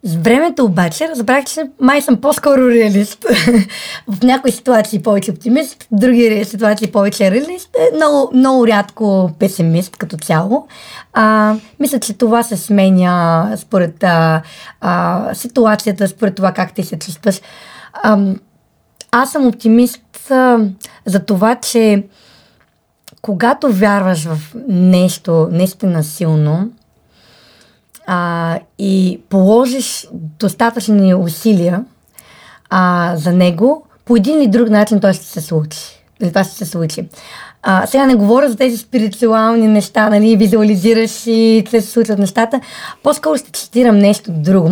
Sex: female